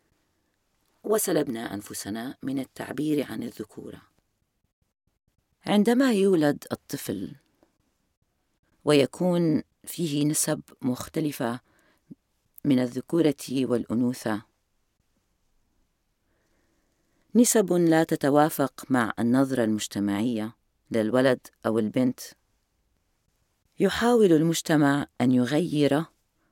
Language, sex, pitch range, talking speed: Arabic, female, 110-160 Hz, 65 wpm